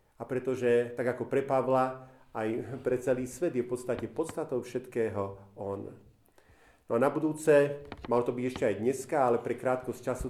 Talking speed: 170 wpm